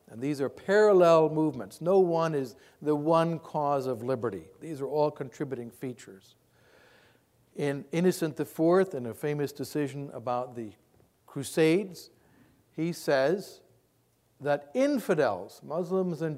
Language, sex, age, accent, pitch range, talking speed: English, male, 60-79, American, 125-170 Hz, 130 wpm